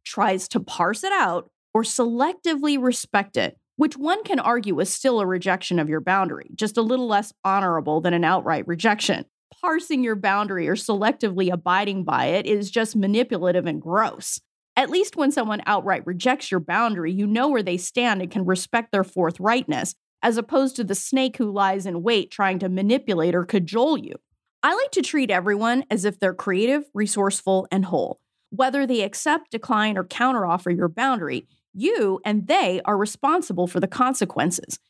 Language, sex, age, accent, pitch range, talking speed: English, female, 30-49, American, 195-280 Hz, 175 wpm